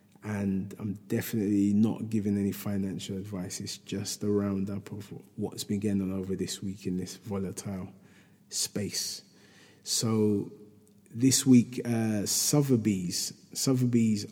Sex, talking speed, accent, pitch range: male, 125 wpm, British, 100-110 Hz